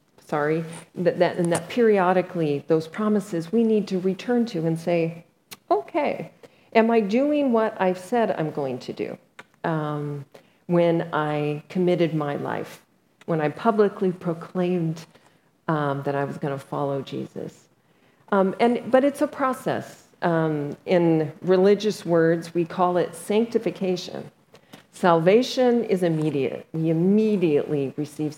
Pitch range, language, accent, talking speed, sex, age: 150-190 Hz, English, American, 135 wpm, female, 40-59